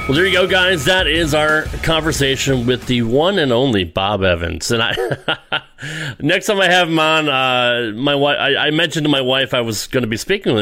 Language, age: English, 30-49